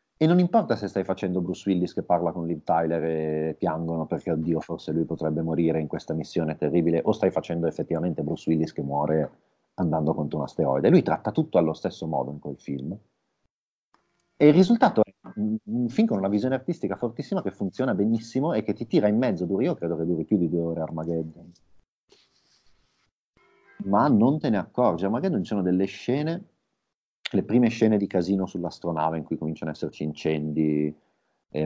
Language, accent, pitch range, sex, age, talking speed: Italian, native, 80-110 Hz, male, 30-49, 185 wpm